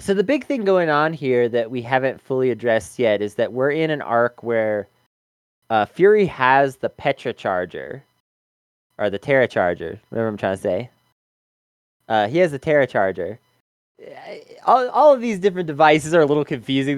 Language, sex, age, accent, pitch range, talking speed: English, male, 20-39, American, 120-165 Hz, 180 wpm